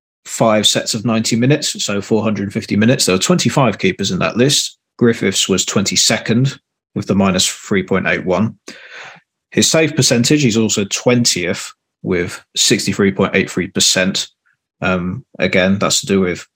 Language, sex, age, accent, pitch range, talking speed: English, male, 20-39, British, 100-130 Hz, 130 wpm